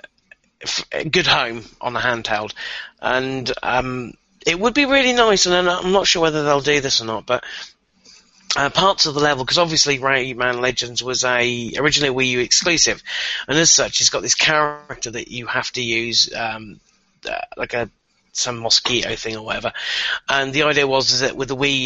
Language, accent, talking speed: English, British, 185 wpm